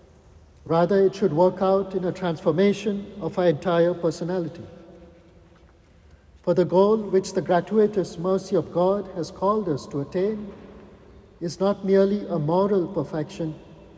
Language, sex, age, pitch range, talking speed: English, male, 60-79, 165-195 Hz, 135 wpm